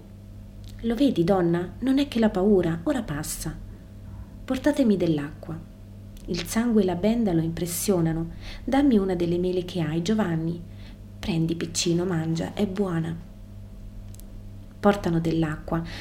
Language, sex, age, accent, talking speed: Italian, female, 30-49, native, 125 wpm